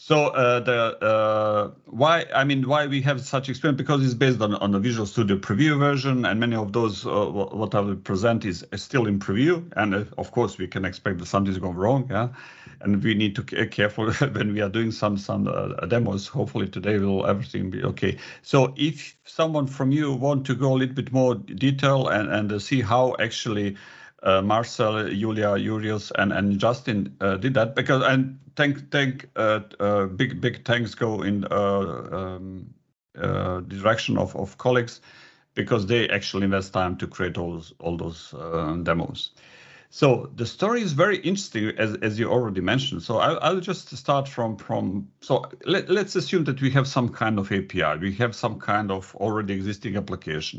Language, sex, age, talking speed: English, male, 50-69, 195 wpm